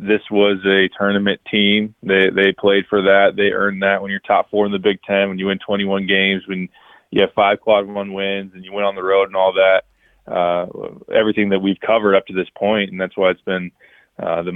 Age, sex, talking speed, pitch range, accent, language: 20-39, male, 240 wpm, 95-110 Hz, American, English